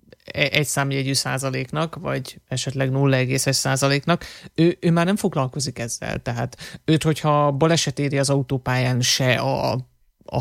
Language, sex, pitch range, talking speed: Hungarian, male, 130-150 Hz, 135 wpm